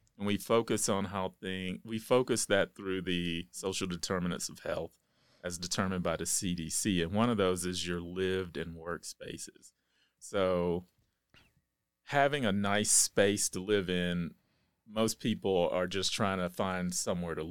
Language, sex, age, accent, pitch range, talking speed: English, male, 30-49, American, 90-100 Hz, 160 wpm